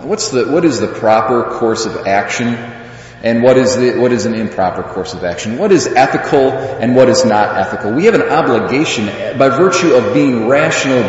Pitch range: 105-155 Hz